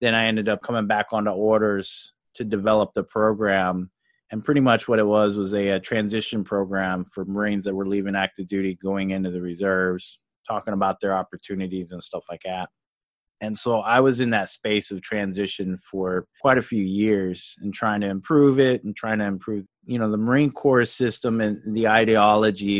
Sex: male